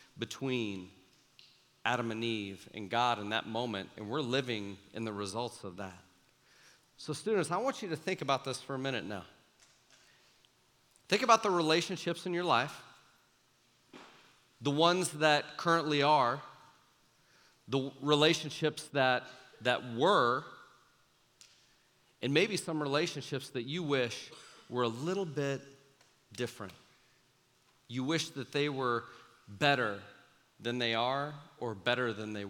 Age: 40-59